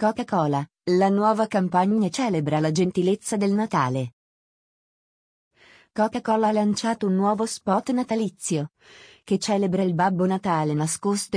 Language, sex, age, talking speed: Italian, female, 30-49, 115 wpm